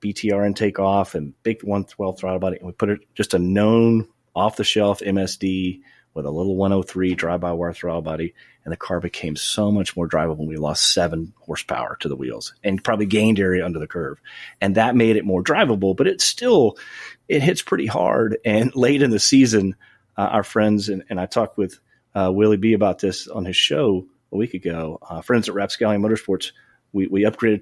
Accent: American